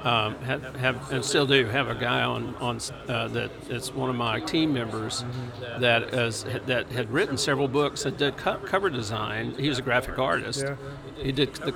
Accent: American